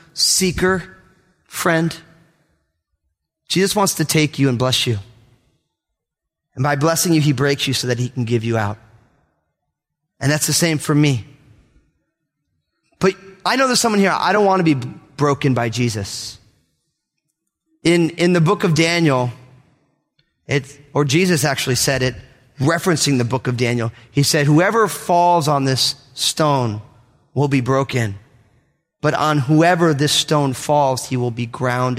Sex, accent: male, American